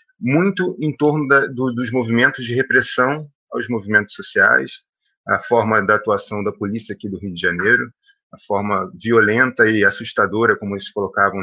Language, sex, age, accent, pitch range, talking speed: Portuguese, male, 30-49, Brazilian, 115-160 Hz, 165 wpm